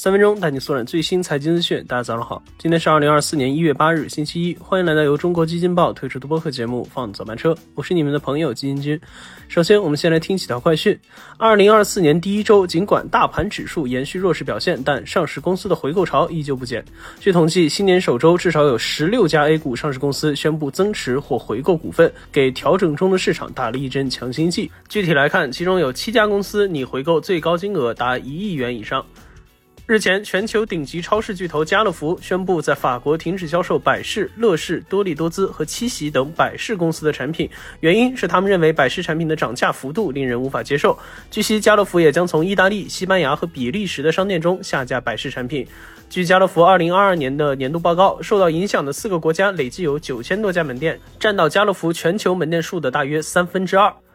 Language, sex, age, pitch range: Chinese, male, 20-39, 145-190 Hz